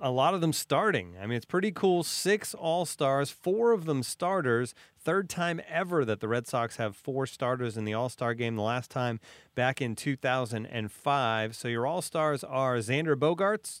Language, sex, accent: English, male, American